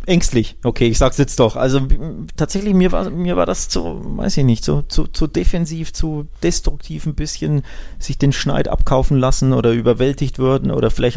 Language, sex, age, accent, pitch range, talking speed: German, male, 20-39, German, 110-140 Hz, 190 wpm